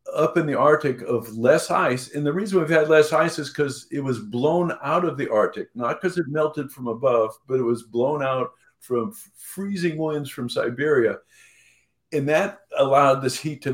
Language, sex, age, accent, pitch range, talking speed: English, male, 50-69, American, 120-155 Hz, 200 wpm